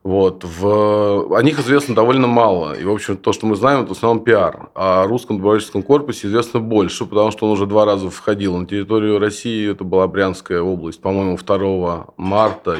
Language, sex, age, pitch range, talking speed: Russian, male, 20-39, 95-110 Hz, 185 wpm